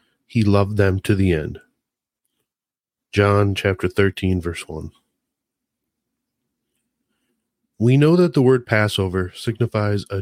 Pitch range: 95-115 Hz